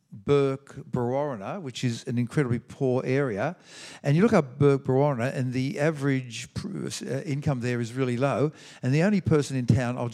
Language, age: English, 60-79